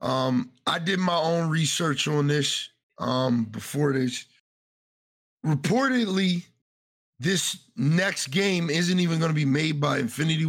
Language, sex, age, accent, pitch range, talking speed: English, male, 50-69, American, 130-170 Hz, 130 wpm